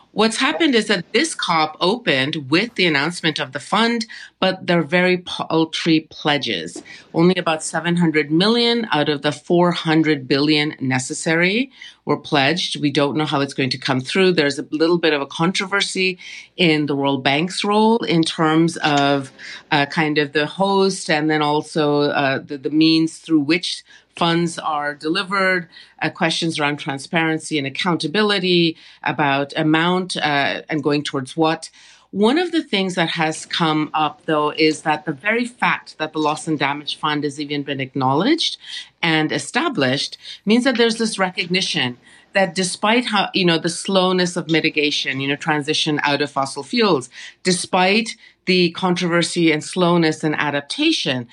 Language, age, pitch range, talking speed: English, 40-59, 150-185 Hz, 160 wpm